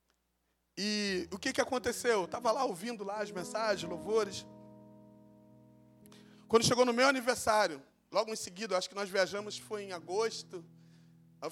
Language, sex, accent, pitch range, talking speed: Portuguese, male, Brazilian, 185-245 Hz, 145 wpm